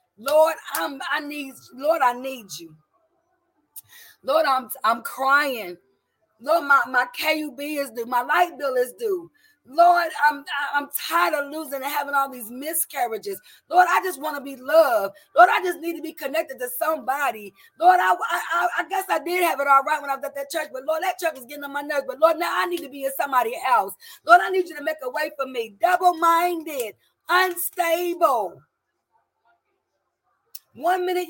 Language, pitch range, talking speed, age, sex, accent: English, 280-360 Hz, 190 wpm, 30-49, female, American